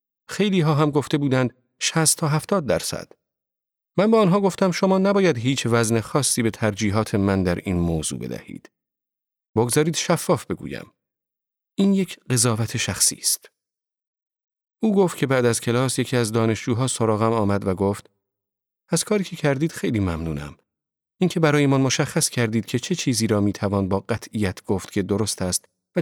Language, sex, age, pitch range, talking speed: Persian, male, 40-59, 100-150 Hz, 160 wpm